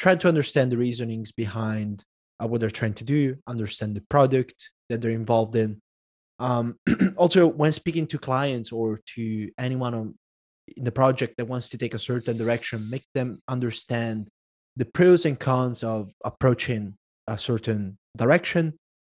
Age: 20-39